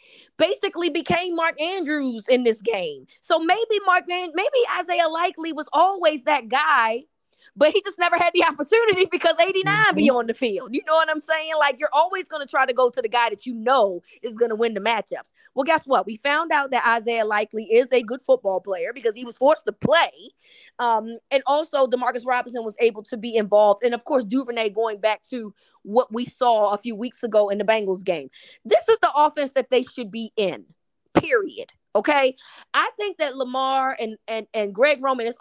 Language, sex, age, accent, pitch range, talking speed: English, female, 20-39, American, 225-335 Hz, 210 wpm